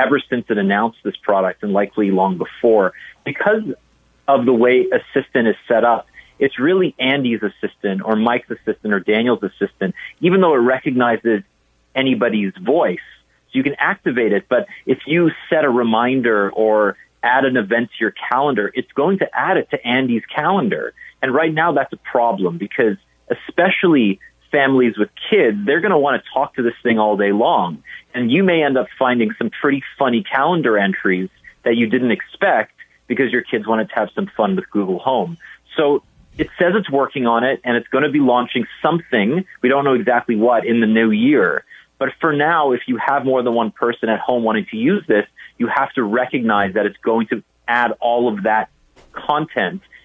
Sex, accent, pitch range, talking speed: male, American, 110-140 Hz, 195 wpm